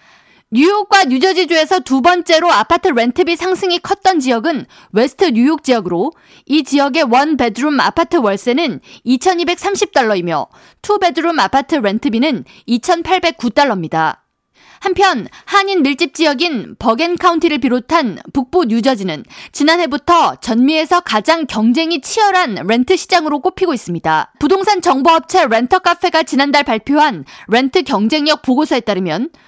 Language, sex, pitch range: Korean, female, 245-345 Hz